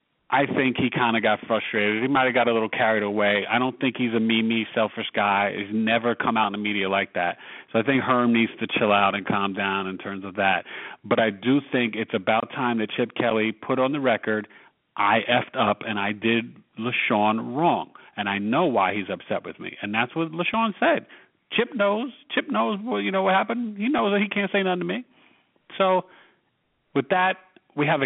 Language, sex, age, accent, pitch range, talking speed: English, male, 40-59, American, 105-135 Hz, 220 wpm